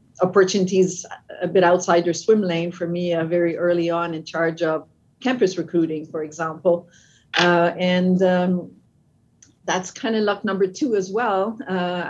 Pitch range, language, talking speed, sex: 170-195 Hz, English, 160 wpm, female